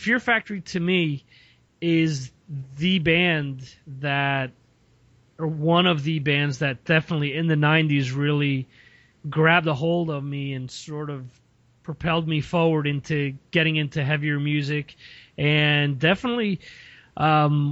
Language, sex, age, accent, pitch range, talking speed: English, male, 30-49, American, 140-160 Hz, 130 wpm